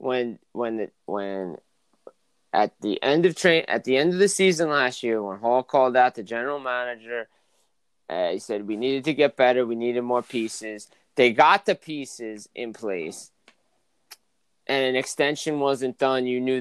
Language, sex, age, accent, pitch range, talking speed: English, male, 20-39, American, 125-150 Hz, 175 wpm